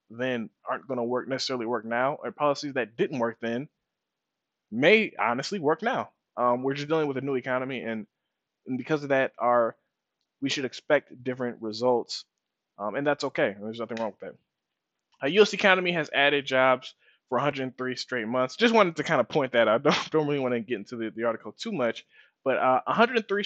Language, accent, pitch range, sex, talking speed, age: English, American, 120-150 Hz, male, 200 wpm, 20-39